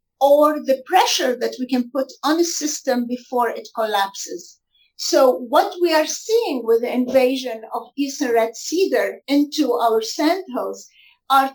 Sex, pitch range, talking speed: female, 245-300 Hz, 150 wpm